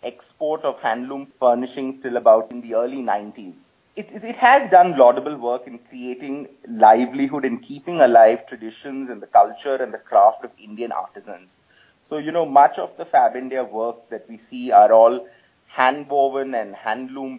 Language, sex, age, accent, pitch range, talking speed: English, male, 30-49, Indian, 125-190 Hz, 170 wpm